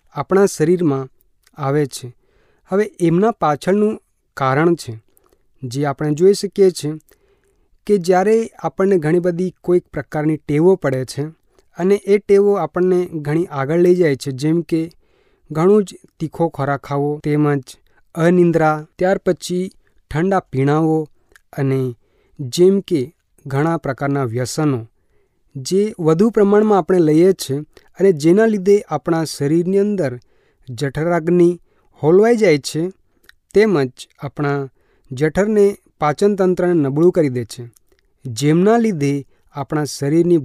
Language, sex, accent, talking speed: Gujarati, male, native, 120 wpm